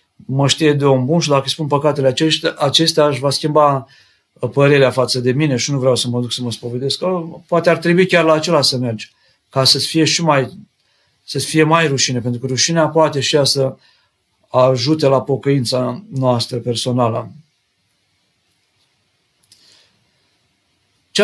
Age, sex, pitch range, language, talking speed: 50-69, male, 130-170 Hz, Romanian, 160 wpm